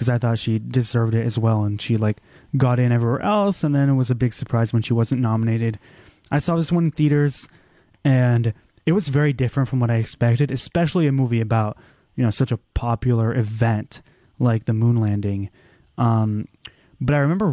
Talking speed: 200 wpm